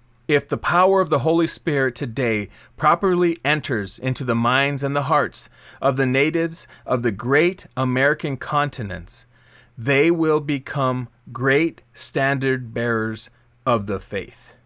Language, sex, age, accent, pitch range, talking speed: English, male, 30-49, American, 115-140 Hz, 135 wpm